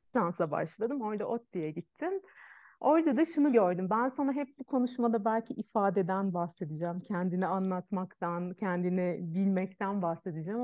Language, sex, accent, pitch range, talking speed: Turkish, female, native, 175-220 Hz, 130 wpm